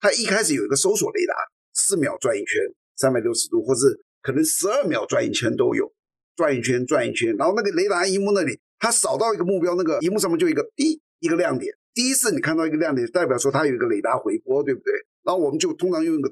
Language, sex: Chinese, male